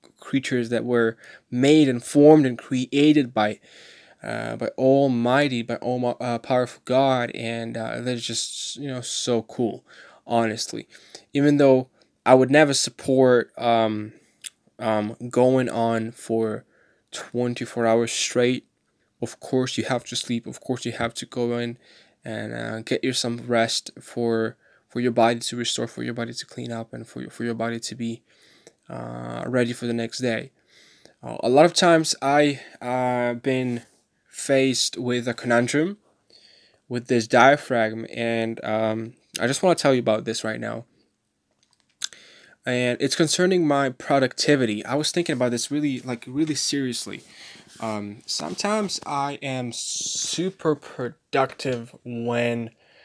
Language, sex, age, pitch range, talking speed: English, male, 10-29, 115-130 Hz, 150 wpm